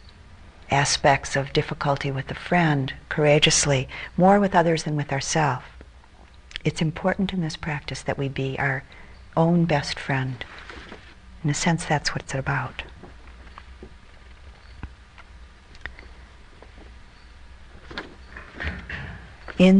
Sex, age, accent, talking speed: female, 50-69, American, 100 wpm